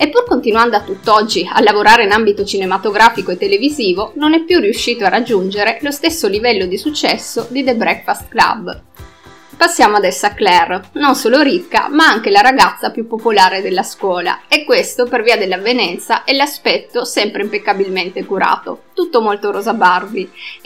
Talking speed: 165 wpm